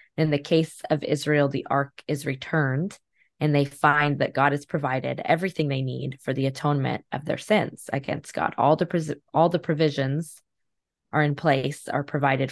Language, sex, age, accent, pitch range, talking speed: English, female, 20-39, American, 135-155 Hz, 175 wpm